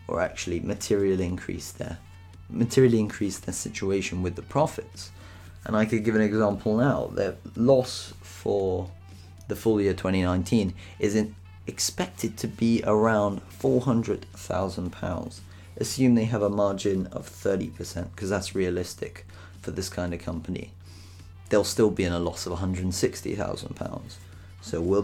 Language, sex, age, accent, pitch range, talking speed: English, male, 30-49, British, 90-110 Hz, 140 wpm